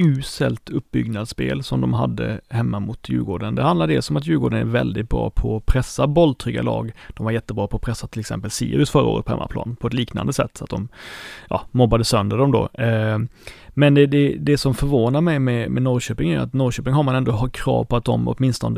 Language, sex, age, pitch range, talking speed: Swedish, male, 30-49, 110-135 Hz, 220 wpm